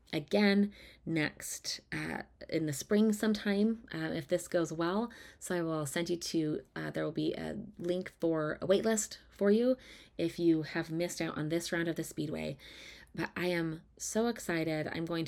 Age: 30-49